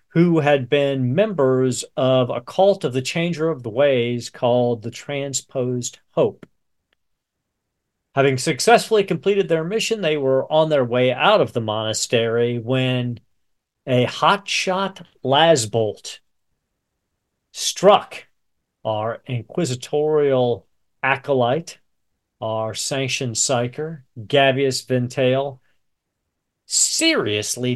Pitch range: 120-155 Hz